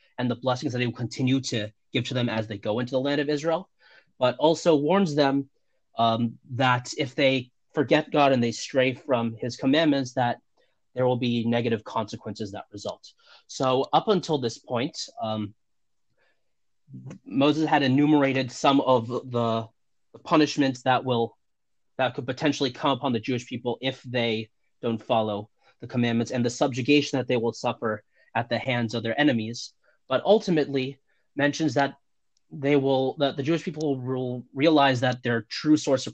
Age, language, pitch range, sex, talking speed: 30-49, English, 120-145 Hz, male, 170 wpm